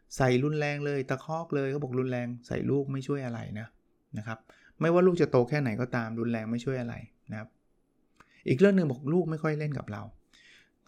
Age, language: 20-39, Thai